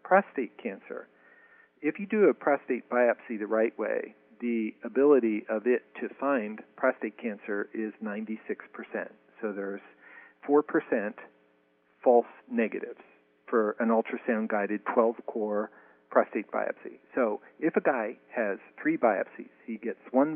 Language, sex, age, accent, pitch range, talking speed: English, male, 40-59, American, 105-135 Hz, 125 wpm